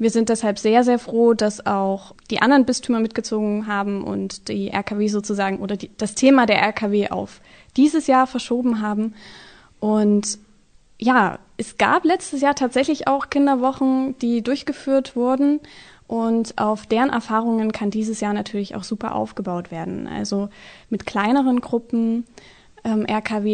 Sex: female